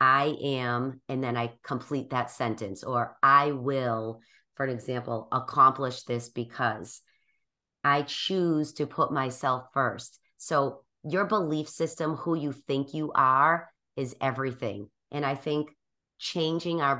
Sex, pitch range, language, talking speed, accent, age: female, 125-145 Hz, English, 140 wpm, American, 30-49